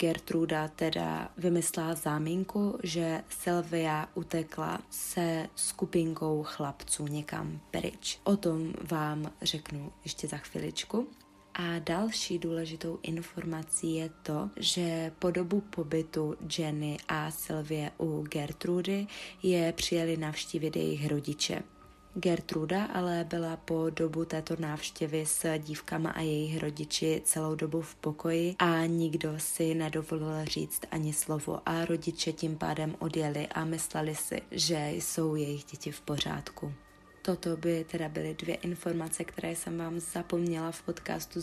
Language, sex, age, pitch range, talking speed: Czech, female, 20-39, 155-185 Hz, 125 wpm